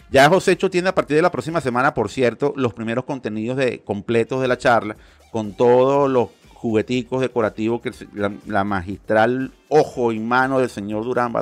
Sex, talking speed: male, 180 wpm